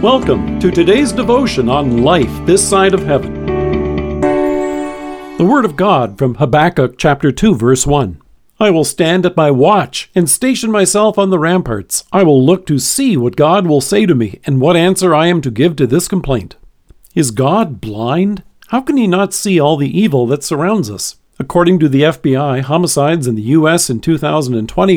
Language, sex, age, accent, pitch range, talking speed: English, male, 50-69, American, 130-185 Hz, 185 wpm